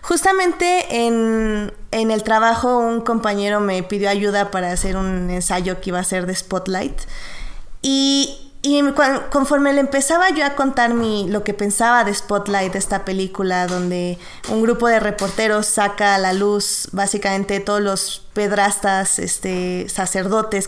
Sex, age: female, 20-39